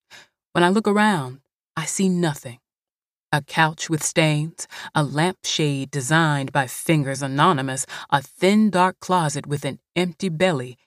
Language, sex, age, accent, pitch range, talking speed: English, female, 30-49, American, 140-185 Hz, 140 wpm